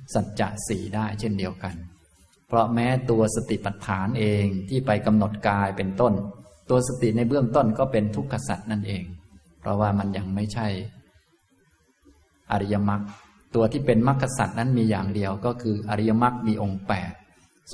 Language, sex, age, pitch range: Thai, male, 20-39, 100-115 Hz